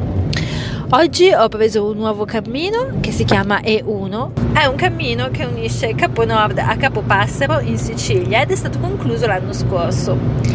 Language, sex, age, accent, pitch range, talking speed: Italian, female, 30-49, native, 120-140 Hz, 160 wpm